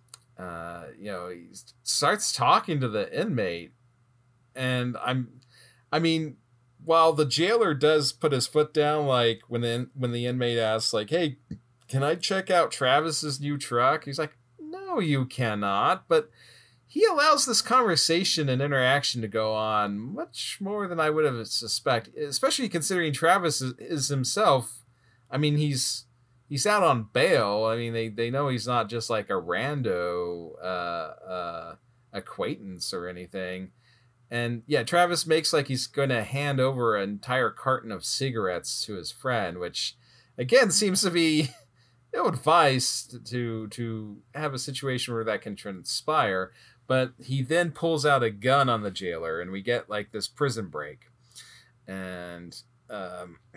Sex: male